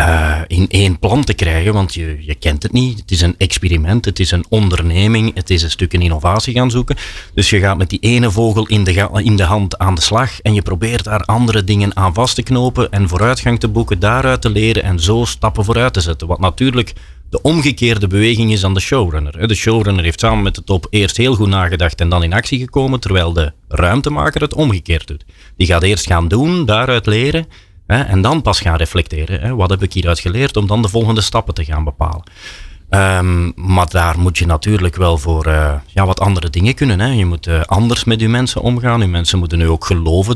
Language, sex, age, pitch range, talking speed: Dutch, male, 30-49, 85-110 Hz, 215 wpm